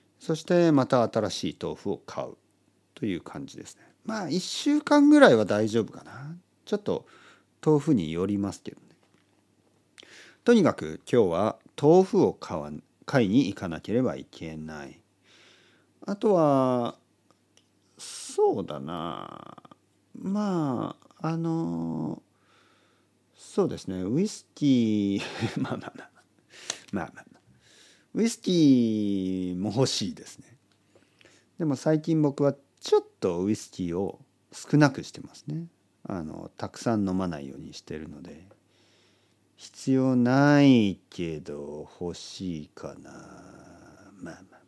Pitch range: 95-155 Hz